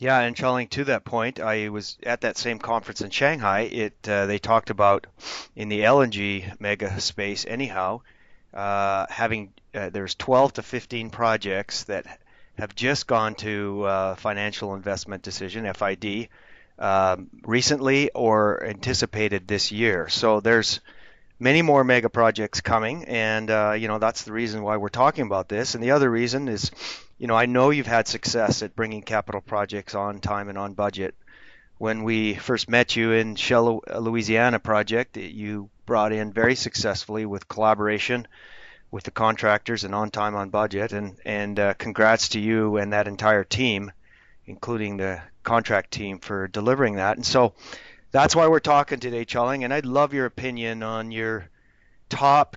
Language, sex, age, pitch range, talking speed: English, male, 30-49, 100-120 Hz, 165 wpm